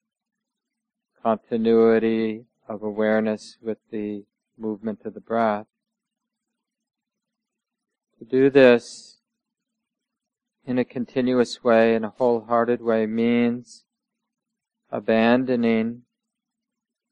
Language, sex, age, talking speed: English, male, 40-59, 75 wpm